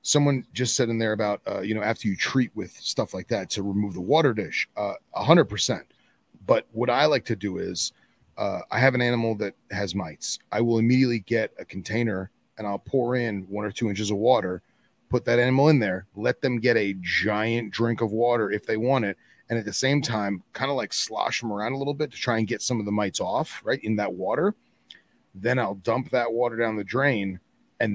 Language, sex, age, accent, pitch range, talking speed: English, male, 30-49, American, 105-120 Hz, 230 wpm